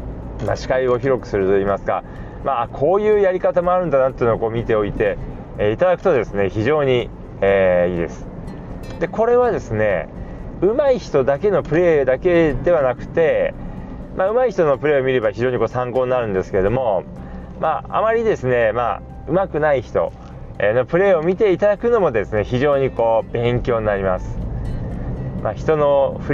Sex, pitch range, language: male, 115-180 Hz, Japanese